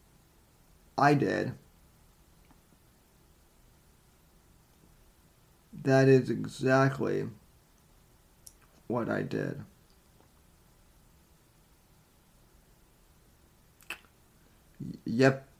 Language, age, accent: English, 30-49, American